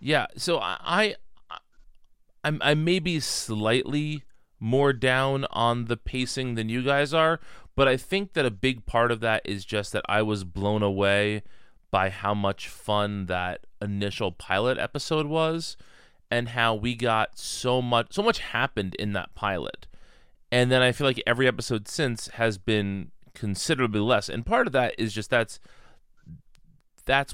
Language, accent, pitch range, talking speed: English, American, 105-130 Hz, 165 wpm